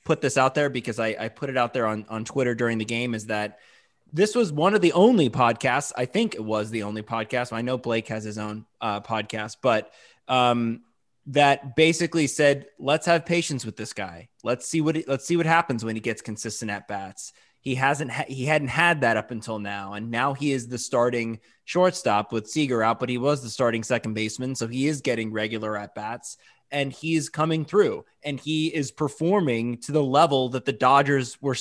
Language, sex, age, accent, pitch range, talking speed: English, male, 20-39, American, 115-160 Hz, 215 wpm